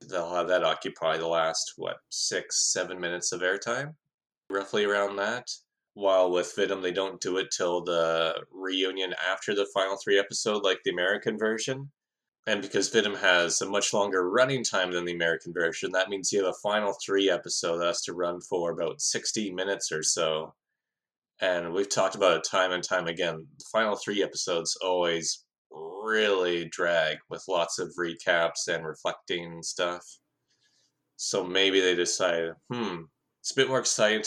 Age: 20-39